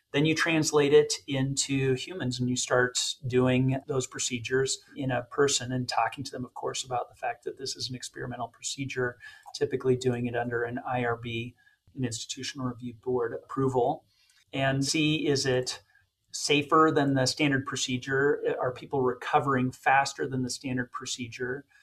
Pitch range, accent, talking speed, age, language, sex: 125-140 Hz, American, 160 wpm, 40-59, English, male